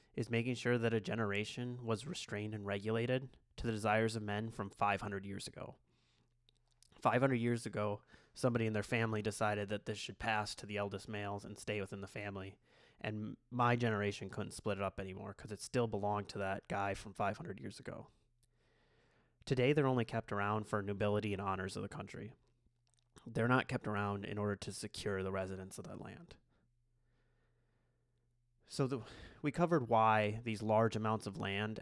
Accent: American